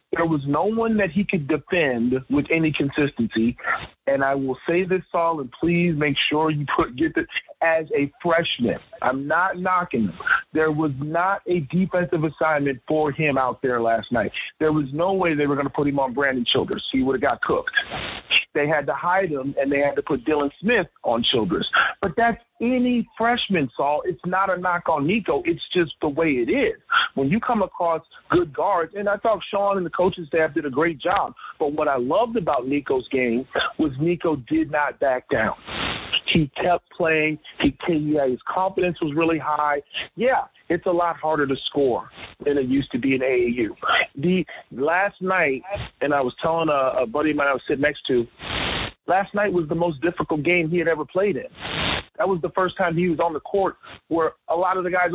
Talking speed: 210 wpm